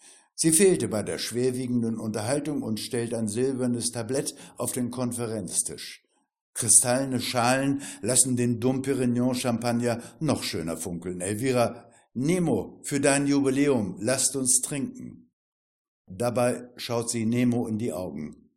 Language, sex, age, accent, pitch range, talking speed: German, male, 60-79, German, 110-135 Hz, 125 wpm